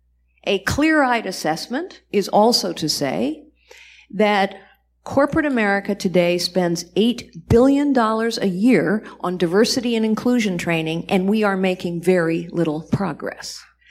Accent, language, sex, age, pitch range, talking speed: American, English, female, 50-69, 175-240 Hz, 120 wpm